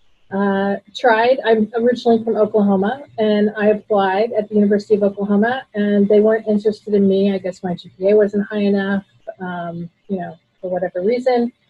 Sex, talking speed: female, 170 wpm